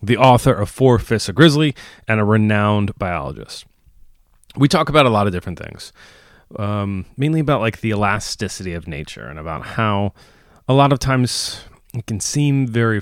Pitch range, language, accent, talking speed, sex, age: 90-125 Hz, English, American, 175 wpm, male, 30-49